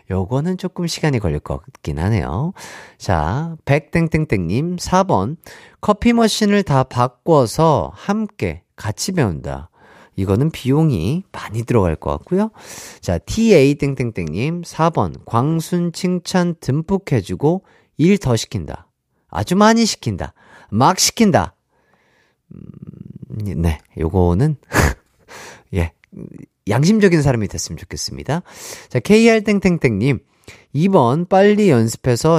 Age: 40-59